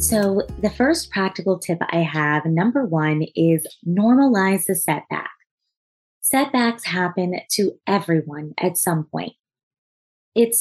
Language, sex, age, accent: English, female, 20-39, American